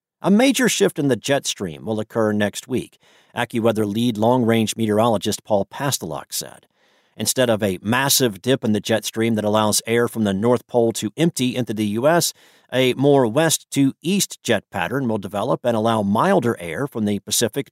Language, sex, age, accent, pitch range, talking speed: English, male, 50-69, American, 110-150 Hz, 180 wpm